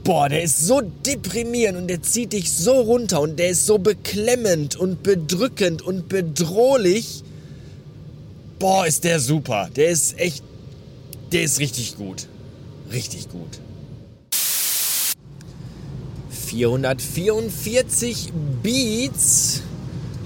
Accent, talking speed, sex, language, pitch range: German, 105 wpm, male, German, 135-180 Hz